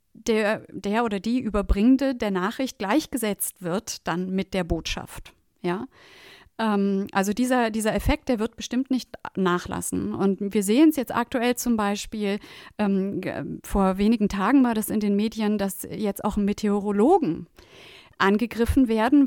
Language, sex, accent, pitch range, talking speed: German, female, German, 200-245 Hz, 145 wpm